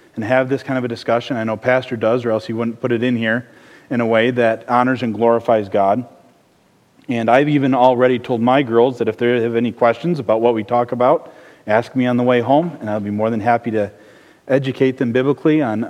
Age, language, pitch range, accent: 40-59, English, 115-135 Hz, American